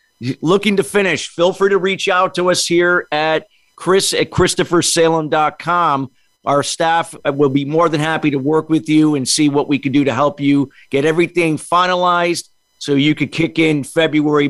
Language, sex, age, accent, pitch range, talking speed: English, male, 50-69, American, 130-160 Hz, 180 wpm